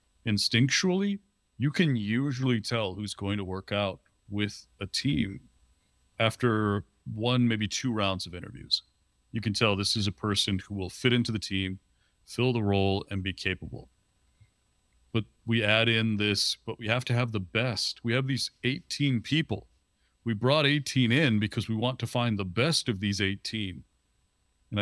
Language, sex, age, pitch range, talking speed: English, male, 40-59, 100-125 Hz, 170 wpm